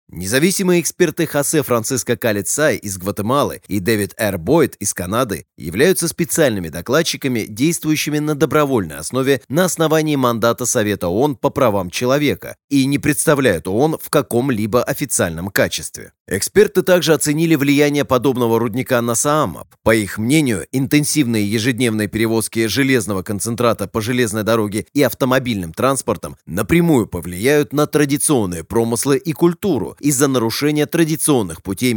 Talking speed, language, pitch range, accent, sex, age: 130 wpm, Russian, 110-150 Hz, native, male, 30-49